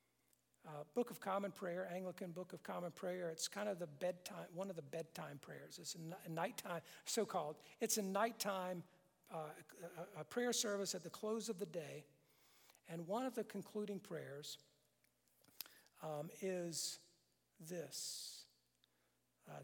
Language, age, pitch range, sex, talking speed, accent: English, 50-69, 150-195 Hz, male, 140 wpm, American